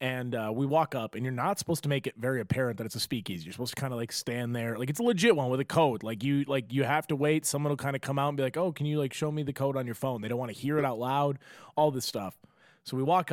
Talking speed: 340 wpm